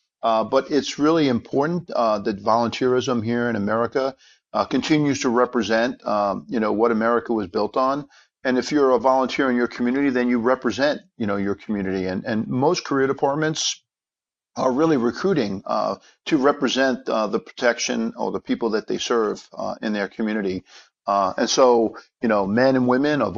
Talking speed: 180 wpm